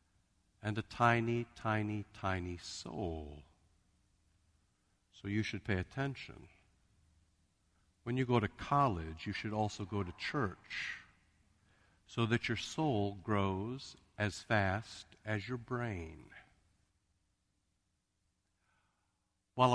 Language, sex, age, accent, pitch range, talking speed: English, male, 60-79, American, 85-125 Hz, 100 wpm